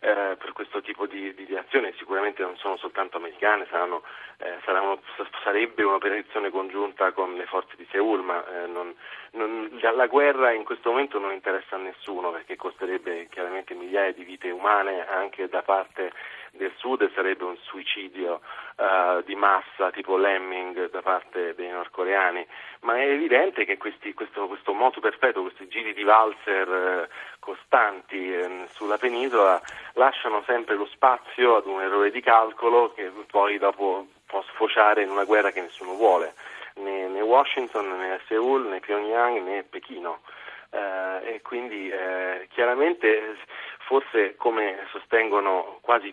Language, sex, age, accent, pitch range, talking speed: Italian, male, 30-49, native, 95-110 Hz, 150 wpm